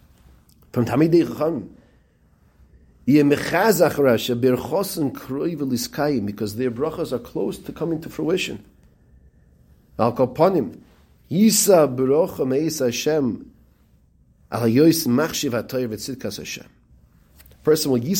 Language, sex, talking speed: English, male, 35 wpm